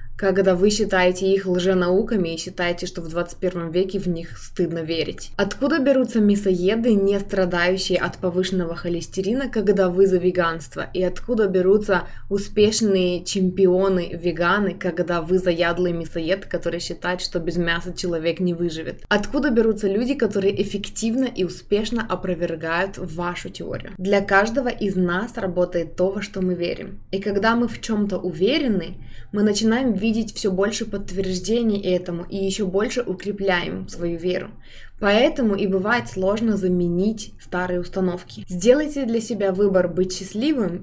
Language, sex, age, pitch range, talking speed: Russian, female, 20-39, 180-205 Hz, 145 wpm